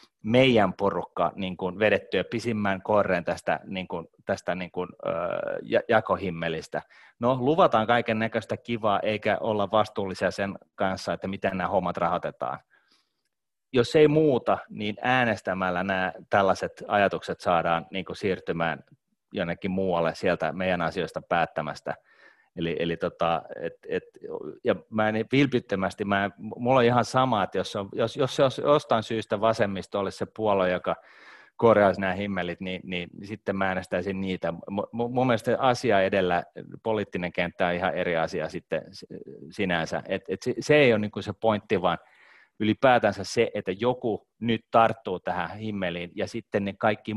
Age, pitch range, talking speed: 30-49, 95-120 Hz, 140 wpm